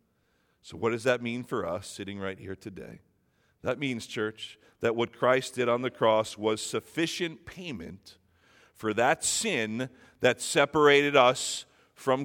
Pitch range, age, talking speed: 125-175 Hz, 50-69, 150 wpm